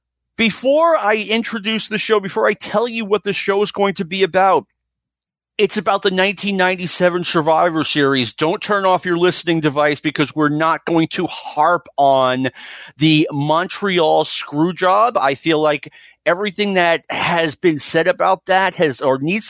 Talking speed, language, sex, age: 165 wpm, English, male, 40-59